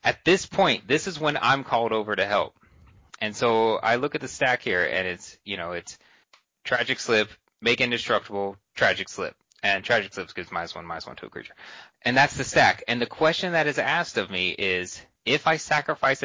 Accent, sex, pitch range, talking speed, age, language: American, male, 90-120 Hz, 210 wpm, 30-49, English